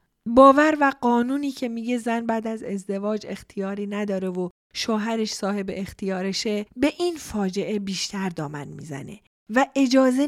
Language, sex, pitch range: Persian, female, 195-255 Hz